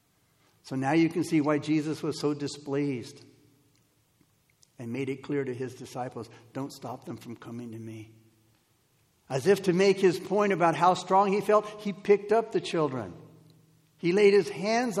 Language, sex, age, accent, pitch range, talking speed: English, male, 60-79, American, 135-180 Hz, 175 wpm